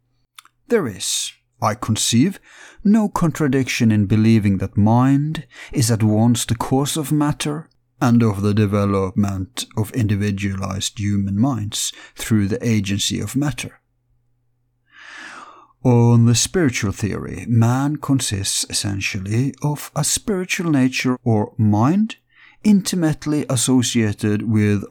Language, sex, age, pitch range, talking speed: English, male, 50-69, 105-130 Hz, 110 wpm